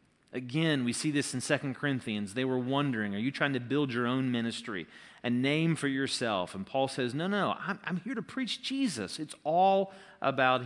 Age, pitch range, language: 40-59, 120-165 Hz, English